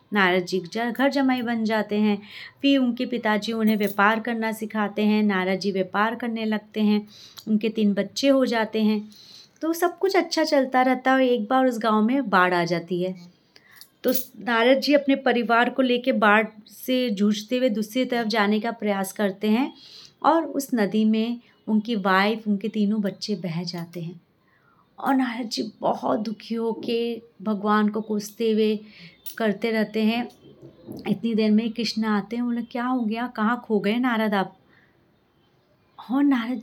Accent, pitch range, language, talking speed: native, 200-240 Hz, Hindi, 170 wpm